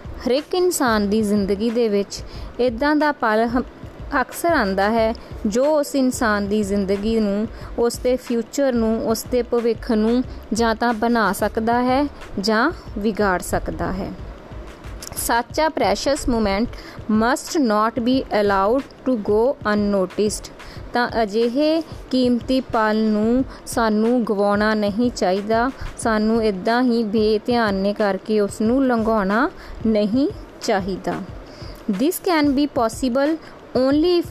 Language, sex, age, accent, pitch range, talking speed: English, female, 20-39, Indian, 220-265 Hz, 115 wpm